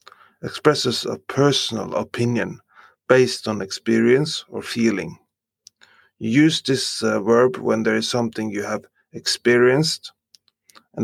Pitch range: 115-125 Hz